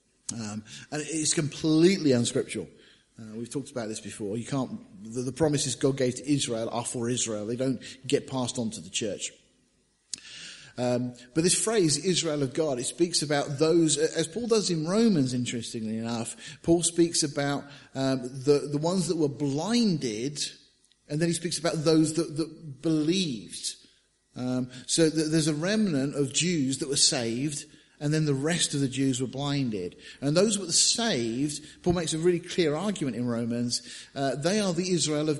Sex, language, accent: male, English, British